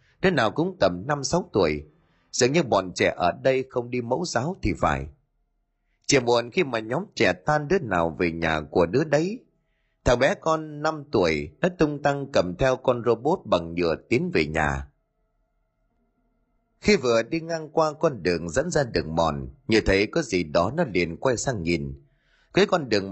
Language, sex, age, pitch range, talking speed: Vietnamese, male, 30-49, 90-145 Hz, 190 wpm